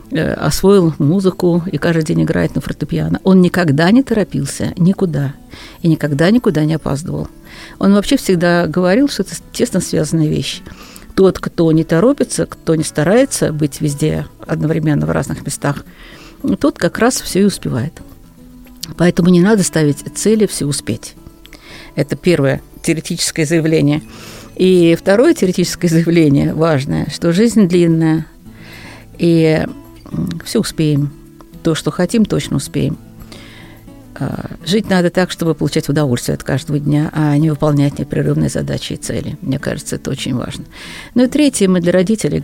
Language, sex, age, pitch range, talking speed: Russian, female, 50-69, 150-190 Hz, 140 wpm